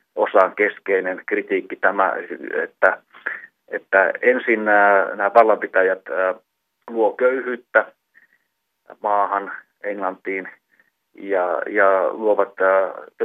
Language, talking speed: Finnish, 80 wpm